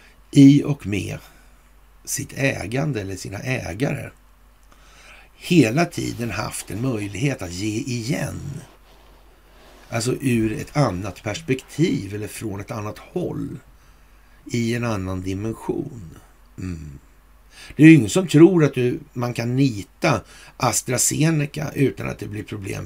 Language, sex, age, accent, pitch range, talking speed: Swedish, male, 60-79, native, 85-125 Hz, 125 wpm